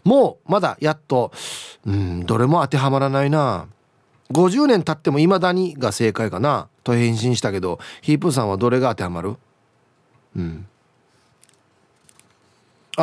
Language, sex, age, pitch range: Japanese, male, 30-49, 120-165 Hz